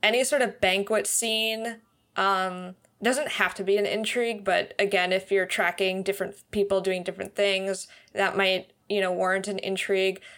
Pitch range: 180-205 Hz